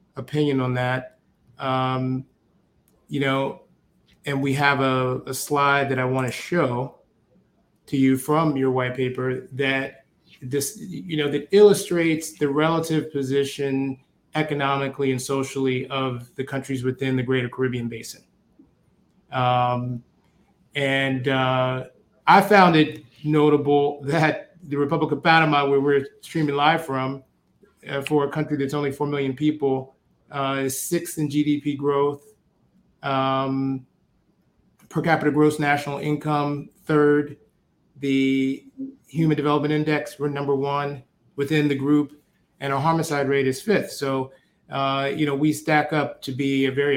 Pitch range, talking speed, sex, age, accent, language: 135-150 Hz, 140 wpm, male, 30-49, American, English